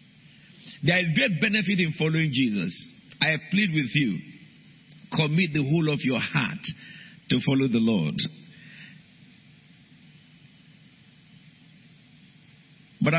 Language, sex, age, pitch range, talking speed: English, male, 50-69, 155-205 Hz, 100 wpm